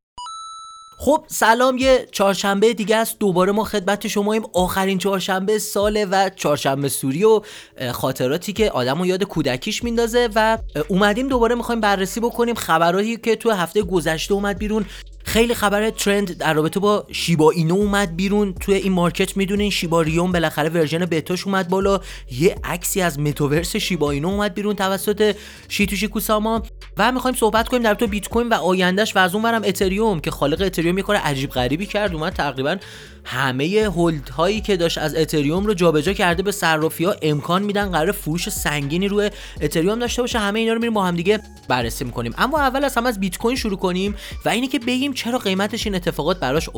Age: 30-49